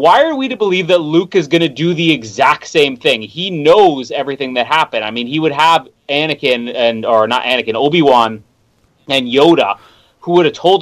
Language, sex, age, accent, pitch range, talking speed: English, male, 30-49, American, 120-165 Hz, 205 wpm